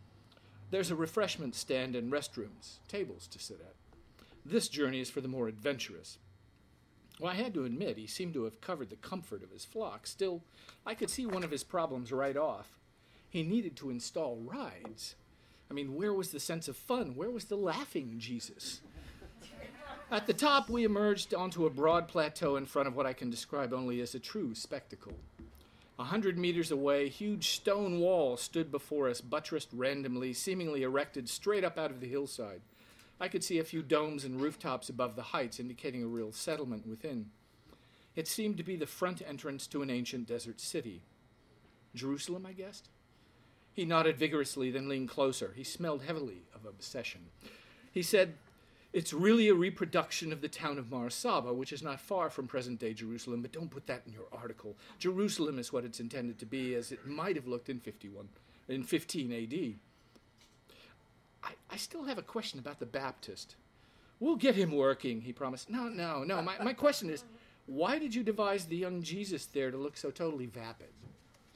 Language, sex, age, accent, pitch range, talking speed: English, male, 50-69, American, 125-185 Hz, 185 wpm